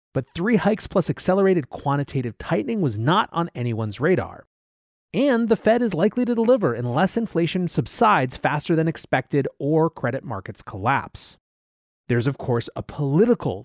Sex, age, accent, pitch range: male, 30-49, American, 120-185 Hz